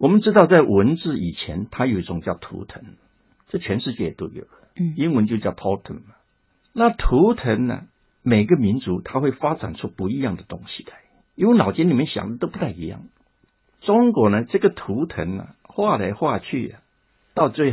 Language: Chinese